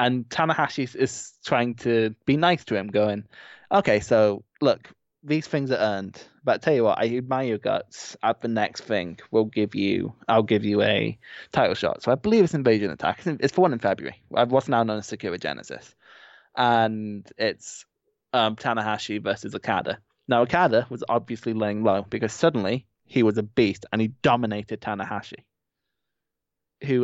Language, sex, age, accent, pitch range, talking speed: English, male, 20-39, British, 105-125 Hz, 175 wpm